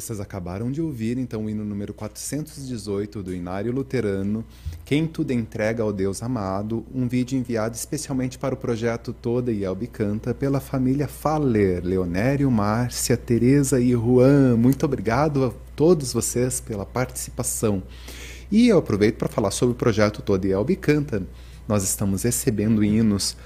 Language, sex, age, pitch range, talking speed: Portuguese, male, 30-49, 100-130 Hz, 155 wpm